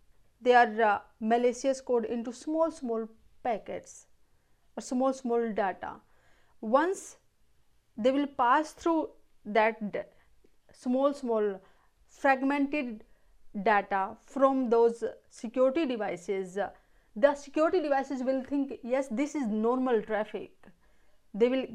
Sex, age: female, 30-49